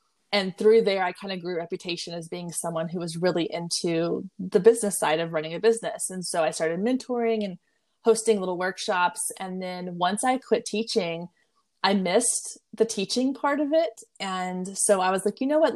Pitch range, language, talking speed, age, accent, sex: 175-215 Hz, English, 200 wpm, 20-39, American, female